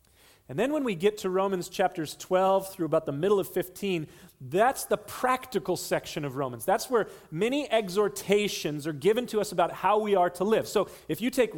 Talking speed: 200 wpm